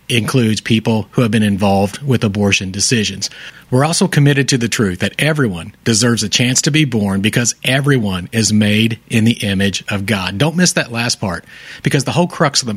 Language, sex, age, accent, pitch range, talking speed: English, male, 40-59, American, 105-130 Hz, 200 wpm